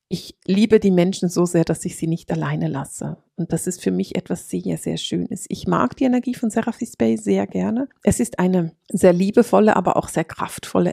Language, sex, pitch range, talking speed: German, female, 170-215 Hz, 215 wpm